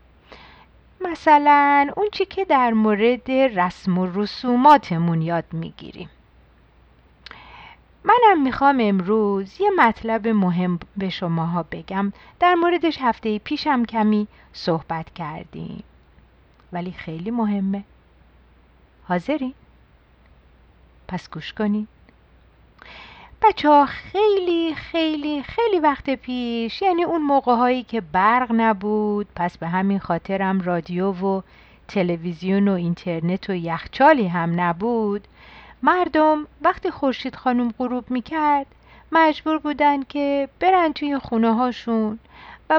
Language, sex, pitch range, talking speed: Persian, female, 180-295 Hz, 100 wpm